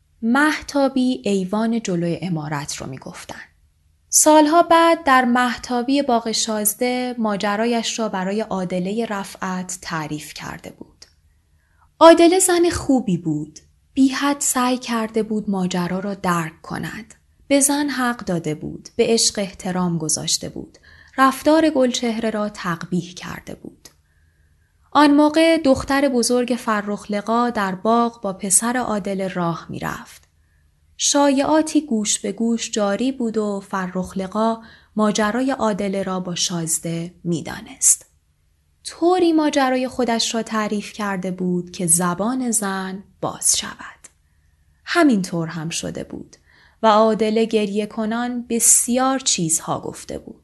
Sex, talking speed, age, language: female, 115 wpm, 20-39, Persian